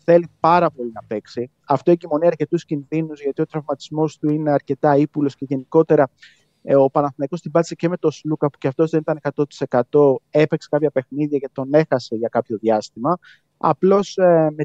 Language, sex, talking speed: Greek, male, 180 wpm